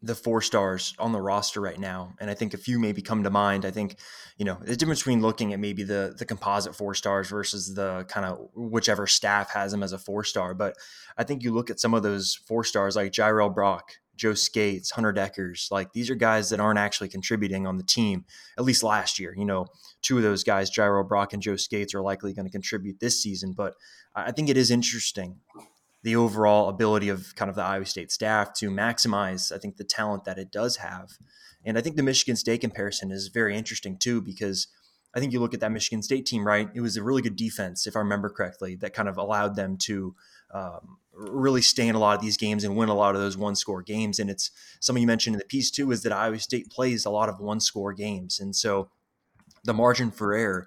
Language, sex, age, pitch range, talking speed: English, male, 20-39, 100-115 Hz, 240 wpm